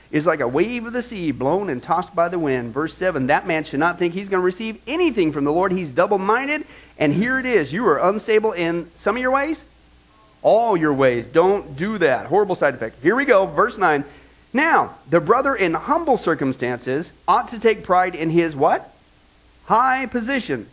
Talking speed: 205 wpm